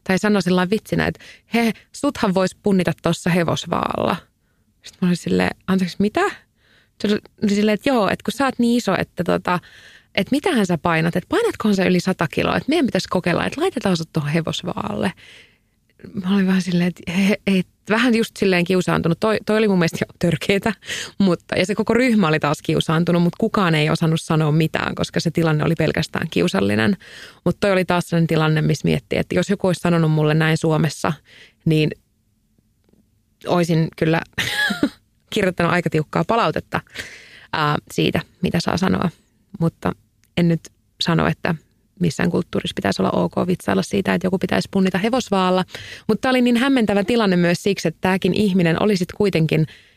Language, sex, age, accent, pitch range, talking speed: Finnish, female, 20-39, native, 160-205 Hz, 175 wpm